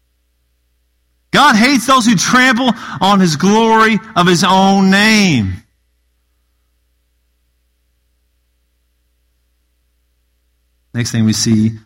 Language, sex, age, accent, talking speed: English, male, 40-59, American, 80 wpm